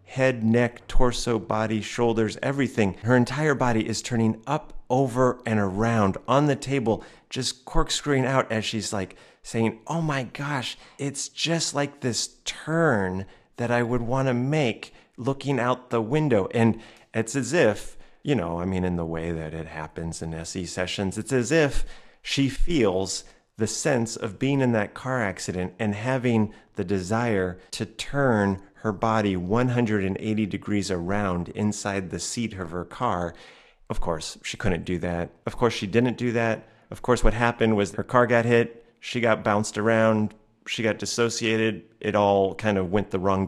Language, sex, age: English, male, 30-49